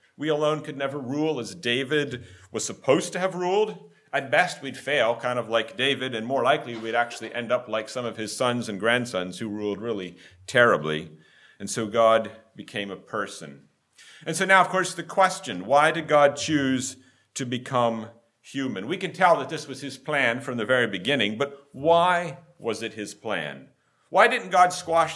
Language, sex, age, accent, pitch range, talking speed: English, male, 50-69, American, 115-160 Hz, 190 wpm